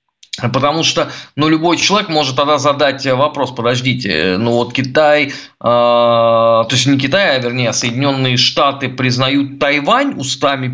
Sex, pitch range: male, 125-175 Hz